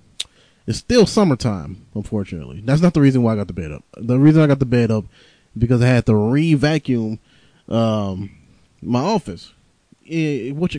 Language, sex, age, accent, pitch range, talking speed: English, male, 20-39, American, 105-140 Hz, 170 wpm